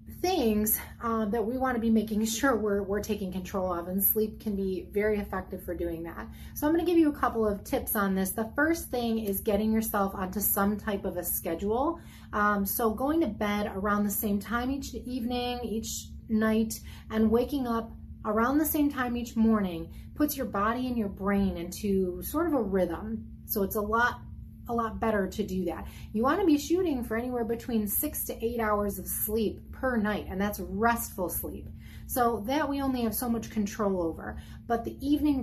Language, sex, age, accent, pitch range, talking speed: English, female, 30-49, American, 195-240 Hz, 205 wpm